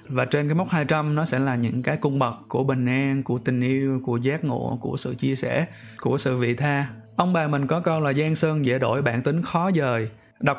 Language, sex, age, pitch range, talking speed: Vietnamese, male, 20-39, 130-160 Hz, 250 wpm